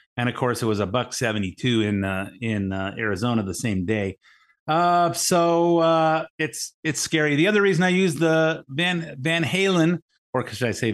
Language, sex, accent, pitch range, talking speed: English, male, American, 115-170 Hz, 190 wpm